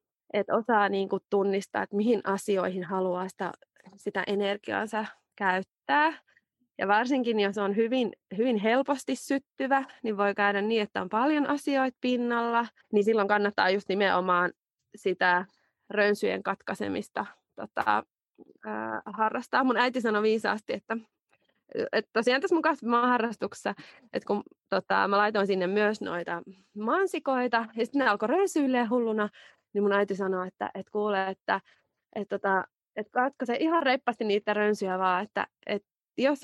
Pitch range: 200-255 Hz